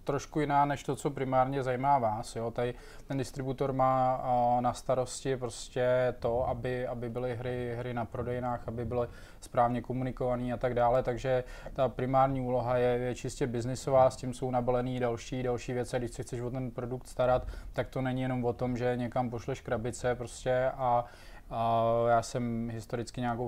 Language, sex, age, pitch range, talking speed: Czech, male, 20-39, 115-130 Hz, 175 wpm